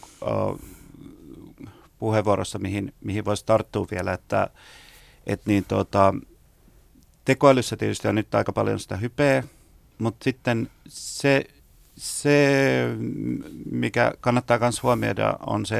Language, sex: Finnish, male